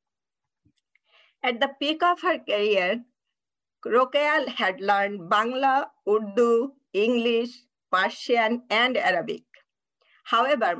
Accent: Indian